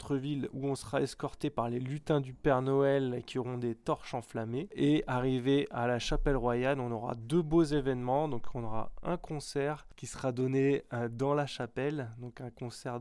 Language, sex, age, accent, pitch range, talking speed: French, male, 20-39, French, 125-145 Hz, 190 wpm